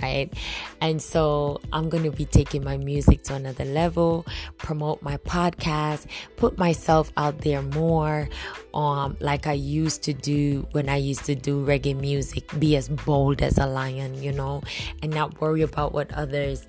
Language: English